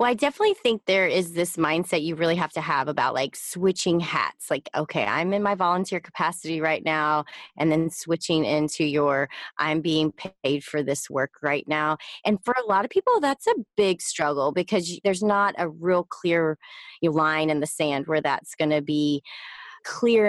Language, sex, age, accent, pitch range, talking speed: English, female, 20-39, American, 160-200 Hz, 190 wpm